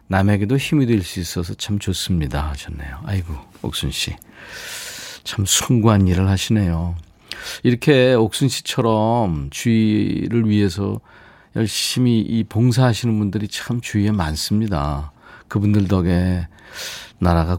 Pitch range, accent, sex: 95-130 Hz, native, male